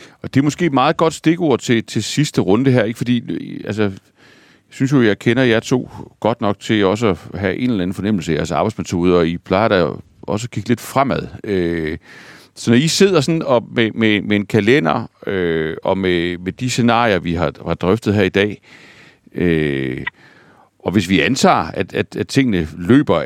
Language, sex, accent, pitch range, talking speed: Danish, male, native, 90-125 Hz, 205 wpm